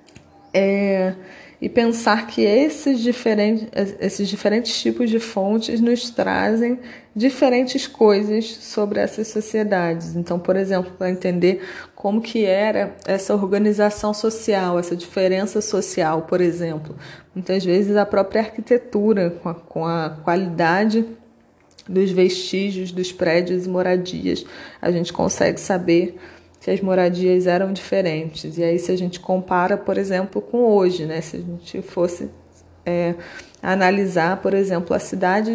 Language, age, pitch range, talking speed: Portuguese, 20-39, 175-210 Hz, 130 wpm